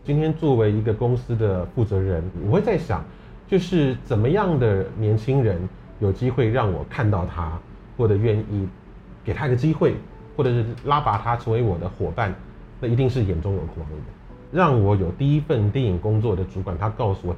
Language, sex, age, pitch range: Chinese, male, 30-49, 95-125 Hz